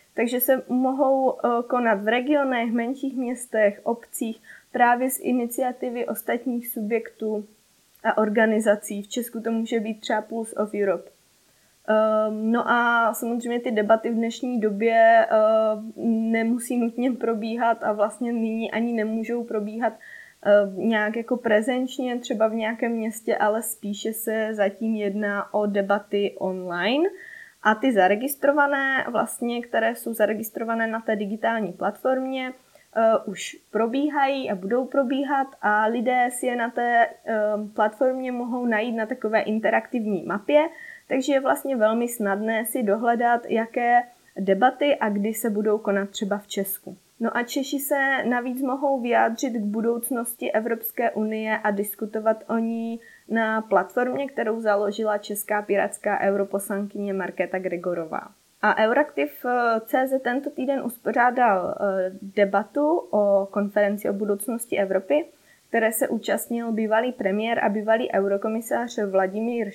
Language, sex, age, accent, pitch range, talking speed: Czech, female, 20-39, native, 210-245 Hz, 125 wpm